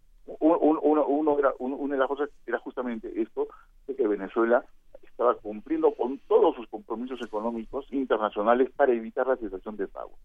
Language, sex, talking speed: Spanish, male, 170 wpm